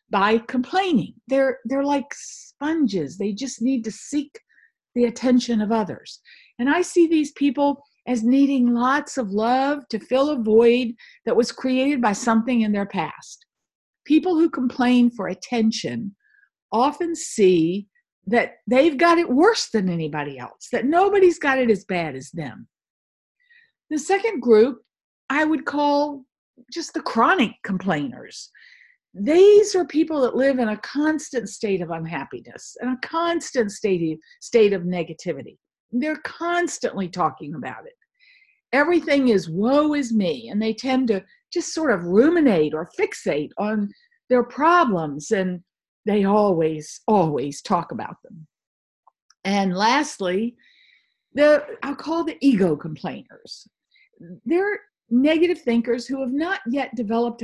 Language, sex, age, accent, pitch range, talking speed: English, female, 50-69, American, 210-305 Hz, 140 wpm